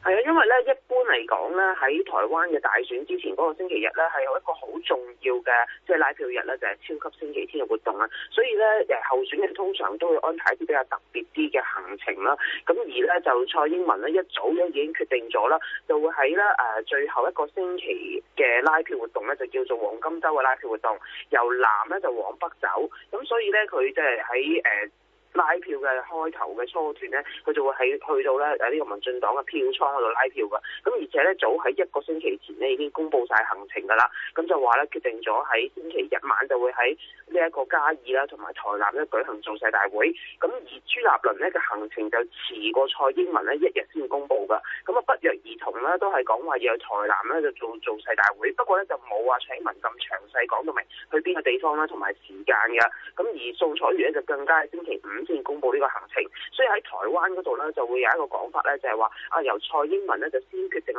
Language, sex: Chinese, male